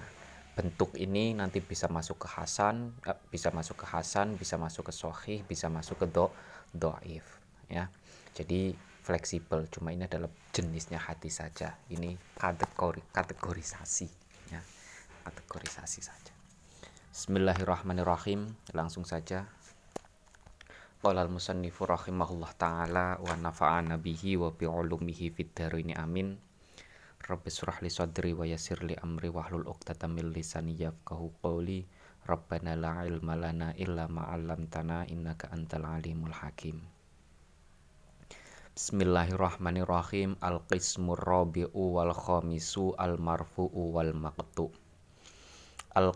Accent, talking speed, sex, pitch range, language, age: native, 105 wpm, male, 80-95 Hz, Indonesian, 20-39